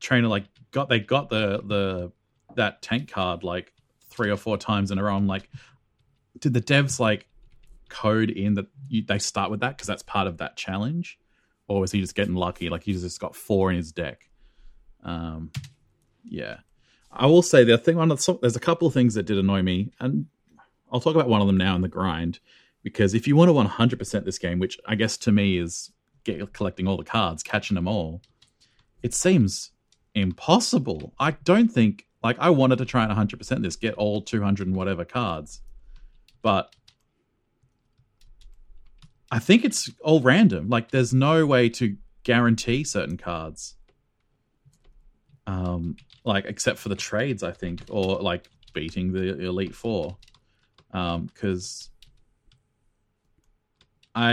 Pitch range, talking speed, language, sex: 95-125 Hz, 170 wpm, English, male